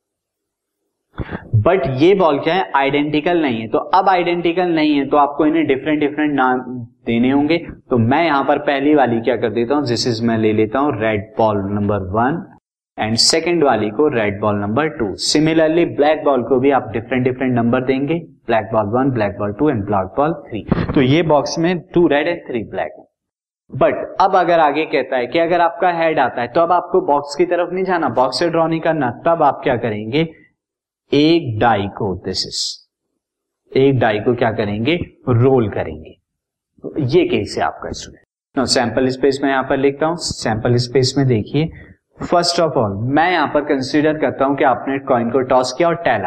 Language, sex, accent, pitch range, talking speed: Hindi, male, native, 120-160 Hz, 195 wpm